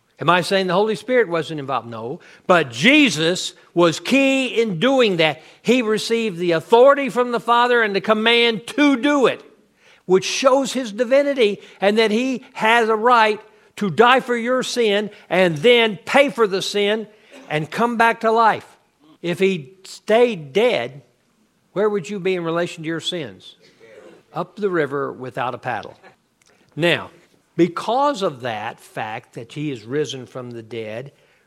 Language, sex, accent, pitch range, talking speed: English, male, American, 170-230 Hz, 165 wpm